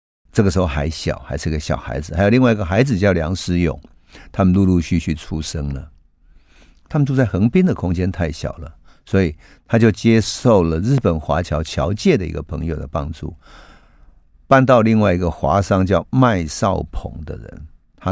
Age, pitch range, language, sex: 50-69, 80-105 Hz, Chinese, male